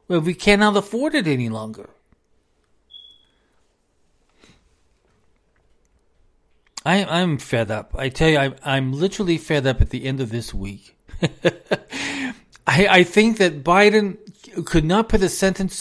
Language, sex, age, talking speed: English, male, 40-59, 125 wpm